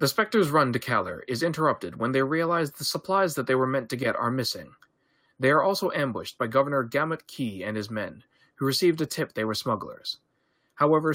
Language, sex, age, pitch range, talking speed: English, male, 30-49, 125-165 Hz, 210 wpm